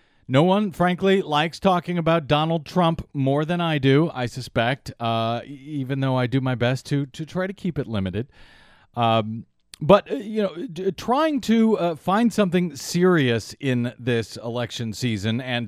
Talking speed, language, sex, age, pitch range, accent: 170 wpm, English, male, 40-59, 125-175 Hz, American